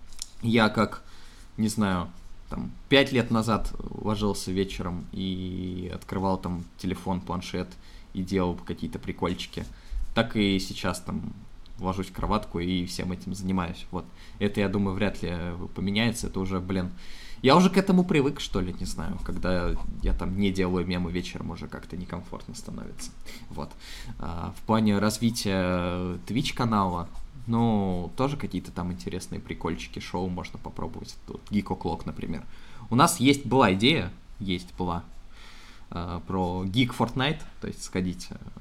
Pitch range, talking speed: 90-115 Hz, 145 wpm